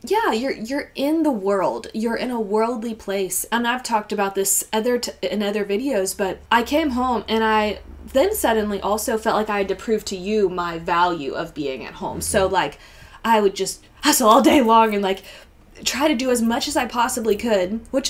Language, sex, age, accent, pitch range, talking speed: English, female, 20-39, American, 200-275 Hz, 215 wpm